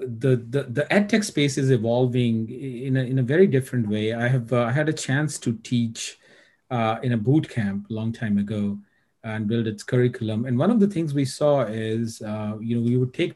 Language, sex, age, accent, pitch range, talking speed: English, male, 40-59, Indian, 115-155 Hz, 220 wpm